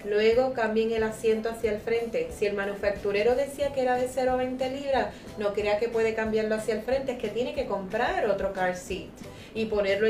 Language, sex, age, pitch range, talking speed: Spanish, female, 30-49, 195-240 Hz, 215 wpm